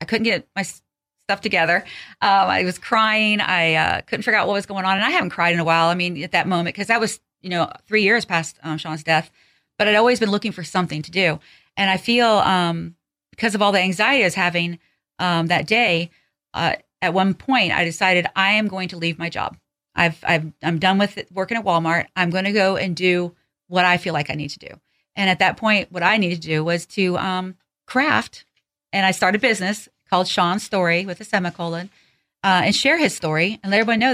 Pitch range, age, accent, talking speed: 170-210 Hz, 40-59, American, 235 wpm